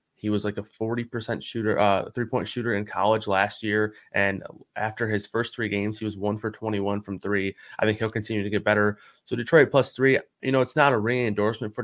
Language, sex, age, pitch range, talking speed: English, male, 20-39, 100-115 Hz, 235 wpm